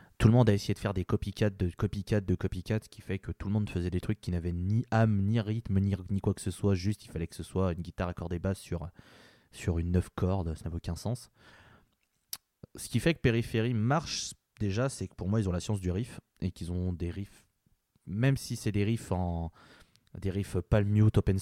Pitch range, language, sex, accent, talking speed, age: 90-110 Hz, French, male, French, 240 wpm, 20-39